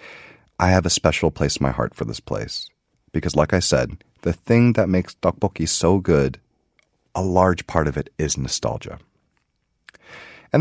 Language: Korean